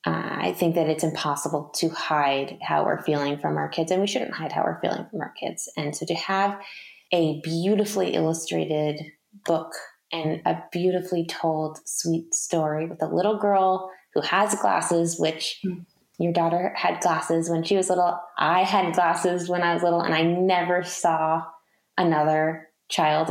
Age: 20-39